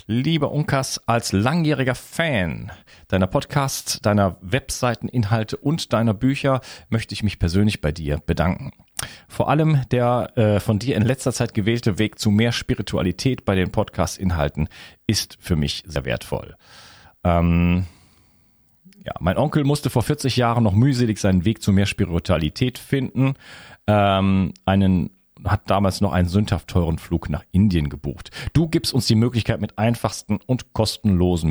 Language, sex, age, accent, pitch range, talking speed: German, male, 40-59, German, 90-120 Hz, 150 wpm